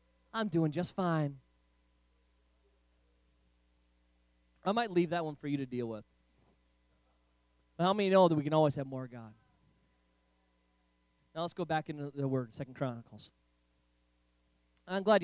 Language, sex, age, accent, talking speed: English, male, 20-39, American, 140 wpm